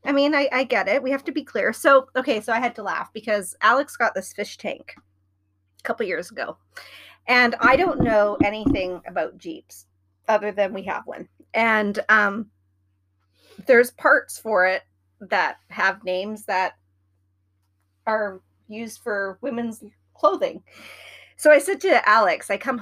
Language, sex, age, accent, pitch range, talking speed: English, female, 30-49, American, 185-285 Hz, 165 wpm